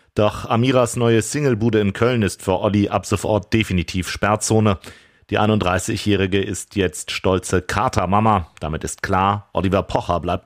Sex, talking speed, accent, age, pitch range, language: male, 145 wpm, German, 40-59, 95-110 Hz, German